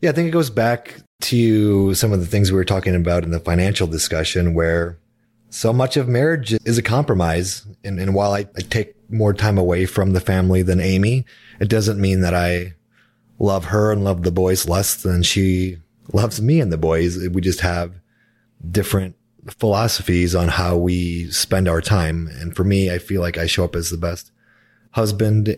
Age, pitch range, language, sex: 30-49, 90-115 Hz, English, male